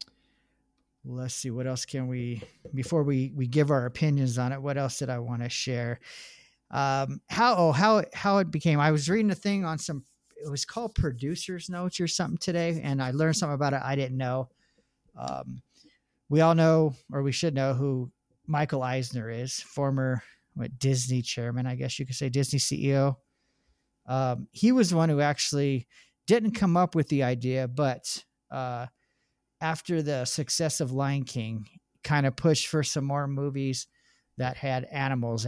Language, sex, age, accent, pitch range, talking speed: English, male, 40-59, American, 125-155 Hz, 180 wpm